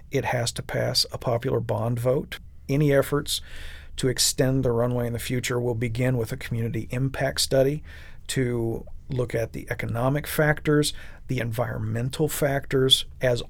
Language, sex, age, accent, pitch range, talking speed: English, male, 40-59, American, 115-130 Hz, 150 wpm